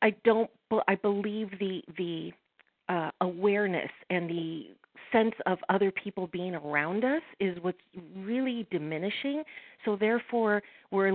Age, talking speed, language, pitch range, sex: 40-59, 135 wpm, English, 180-230 Hz, female